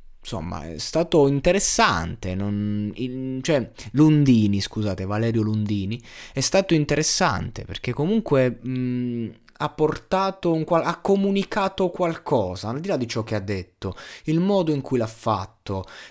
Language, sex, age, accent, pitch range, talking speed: Italian, male, 20-39, native, 105-150 Hz, 140 wpm